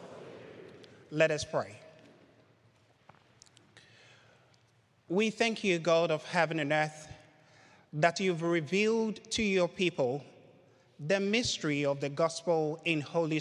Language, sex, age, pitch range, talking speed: English, male, 30-49, 140-185 Hz, 105 wpm